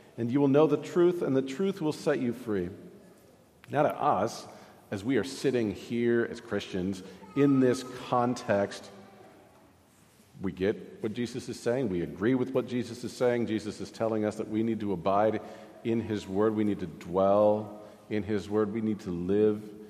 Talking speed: 185 wpm